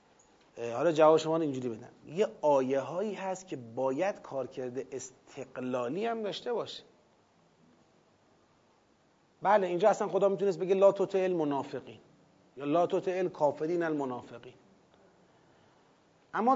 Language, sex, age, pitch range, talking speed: Persian, male, 30-49, 150-195 Hz, 120 wpm